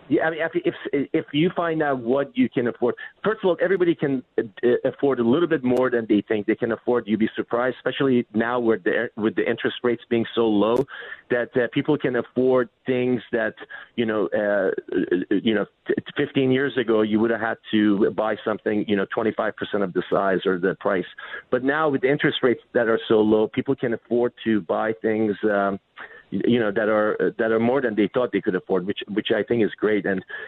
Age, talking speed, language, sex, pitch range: 40-59, 225 wpm, English, male, 115-145 Hz